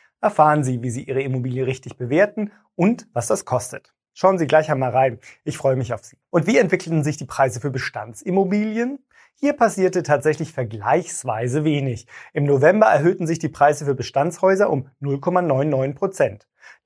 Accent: German